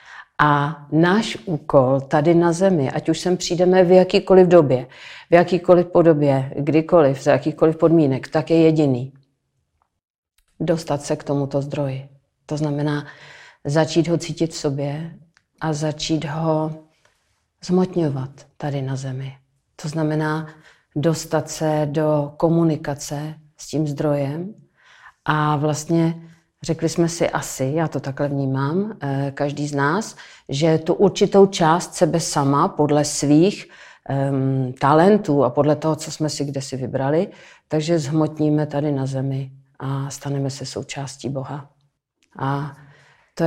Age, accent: 50-69, native